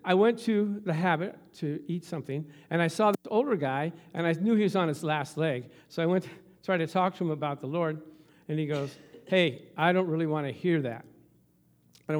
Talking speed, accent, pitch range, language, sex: 235 wpm, American, 145-185 Hz, English, male